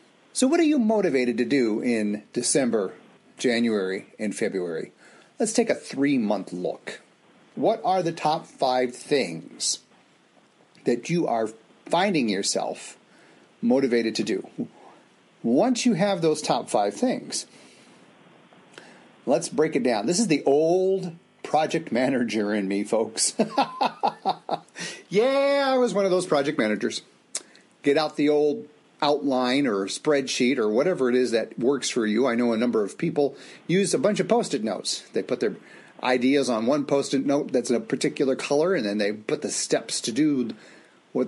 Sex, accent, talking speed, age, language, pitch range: male, American, 155 wpm, 40-59, English, 125-190 Hz